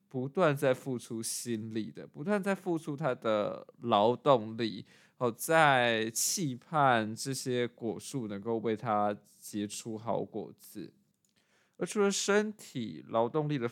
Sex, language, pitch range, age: male, Chinese, 110-160 Hz, 20-39